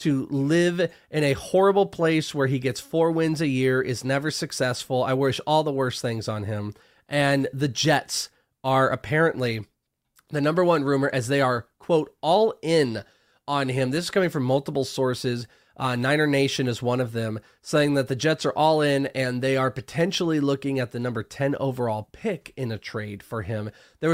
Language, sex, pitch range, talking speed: English, male, 120-150 Hz, 195 wpm